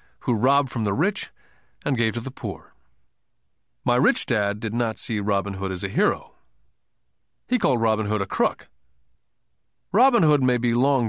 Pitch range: 105-155 Hz